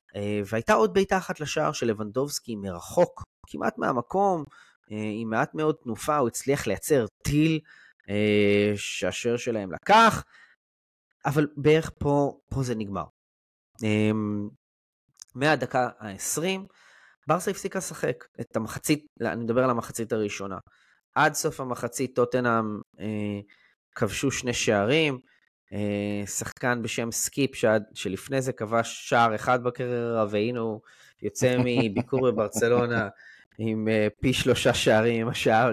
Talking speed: 120 wpm